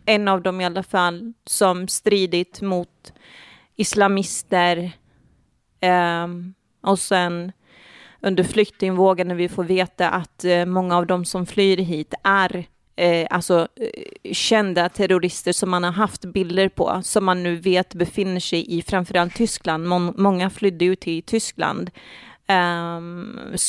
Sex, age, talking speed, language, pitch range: female, 30-49, 130 wpm, Swedish, 175-200 Hz